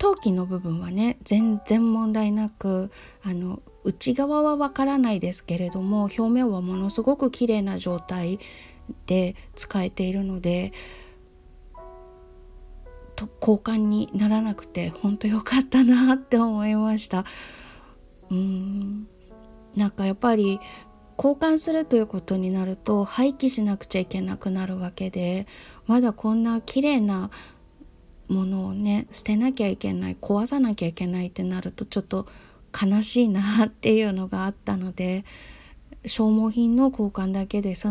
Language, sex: Japanese, female